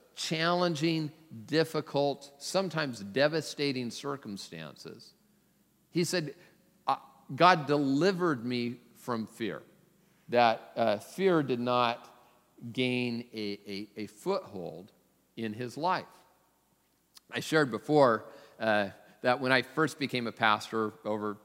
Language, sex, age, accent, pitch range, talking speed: English, male, 50-69, American, 115-165 Hz, 105 wpm